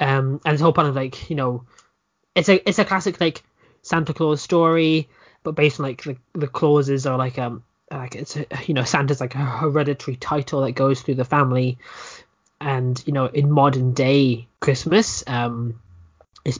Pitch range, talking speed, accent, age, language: 125-150 Hz, 190 wpm, British, 20-39, English